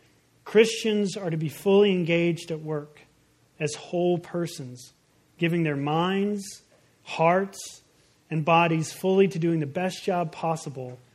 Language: English